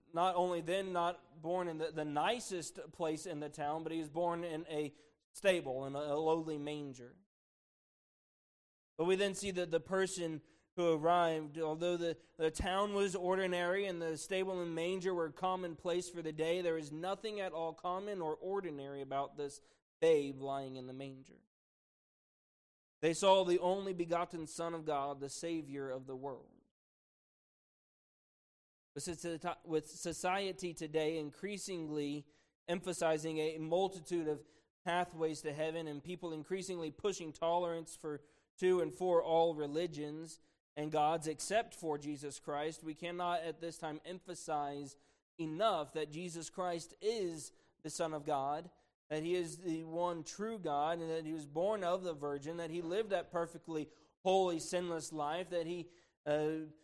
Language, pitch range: English, 155-175 Hz